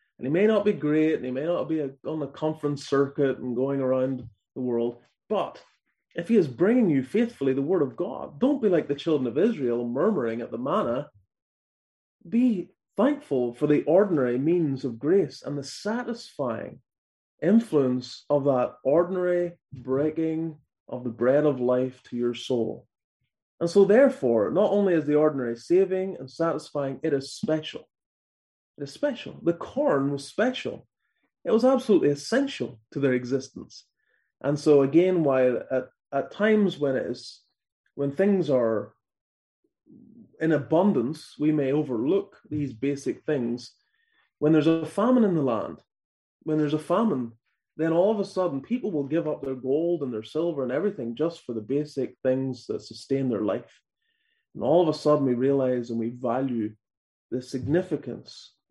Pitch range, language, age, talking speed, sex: 130-180 Hz, English, 30-49, 165 wpm, male